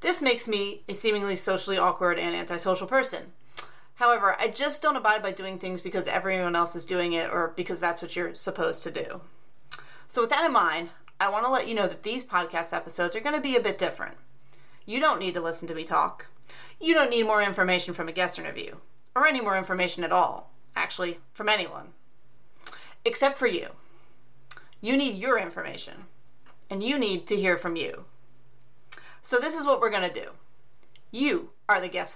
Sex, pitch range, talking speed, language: female, 175-245 Hz, 200 wpm, English